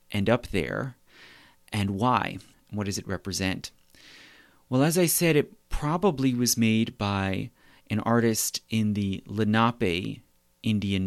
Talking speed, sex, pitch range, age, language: 130 wpm, male, 100-120 Hz, 30-49, English